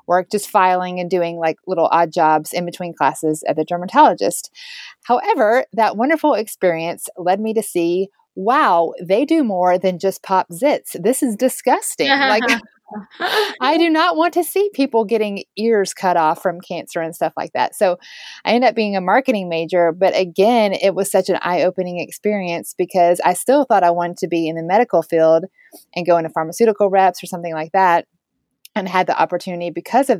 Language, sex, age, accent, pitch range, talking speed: English, female, 30-49, American, 170-230 Hz, 190 wpm